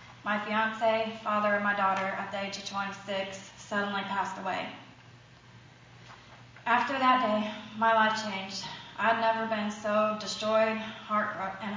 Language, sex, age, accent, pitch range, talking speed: English, female, 30-49, American, 190-220 Hz, 140 wpm